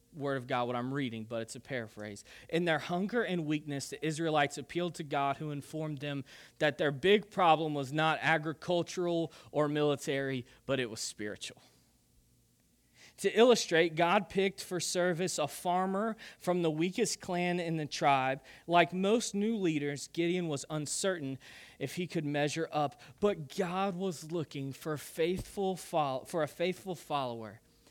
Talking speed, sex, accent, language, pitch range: 155 wpm, male, American, English, 130-175 Hz